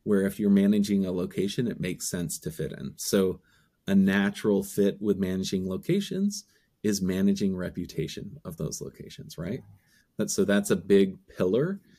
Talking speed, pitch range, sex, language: 160 wpm, 100-130 Hz, male, English